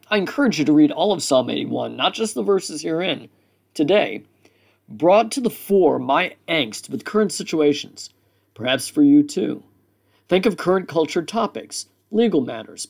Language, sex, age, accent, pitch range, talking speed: English, male, 50-69, American, 140-205 Hz, 165 wpm